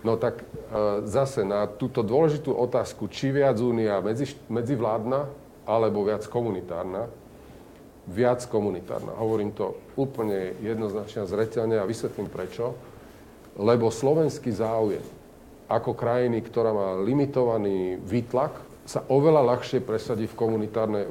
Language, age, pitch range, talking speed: Slovak, 40-59, 100-125 Hz, 115 wpm